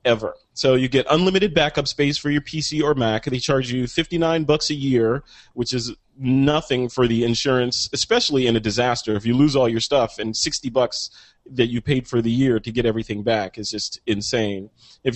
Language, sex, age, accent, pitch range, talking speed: English, male, 30-49, American, 115-150 Hz, 210 wpm